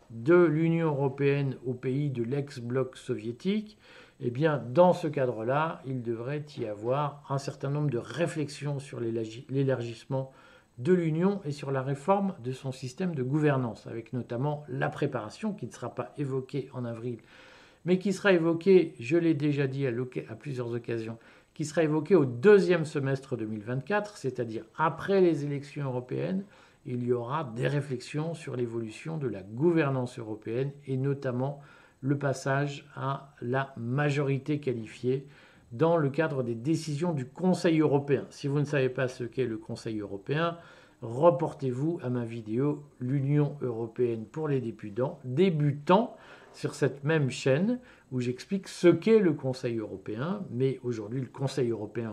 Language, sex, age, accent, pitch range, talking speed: French, male, 50-69, French, 125-155 Hz, 155 wpm